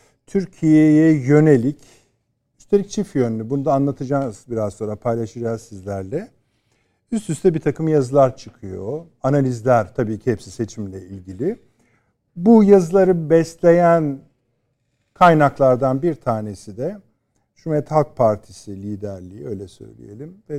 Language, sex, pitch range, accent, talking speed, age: Turkish, male, 115-150 Hz, native, 110 wpm, 50-69